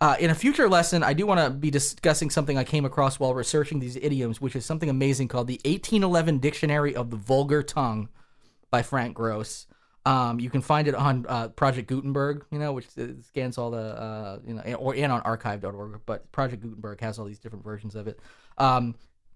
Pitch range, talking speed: 120-155 Hz, 210 wpm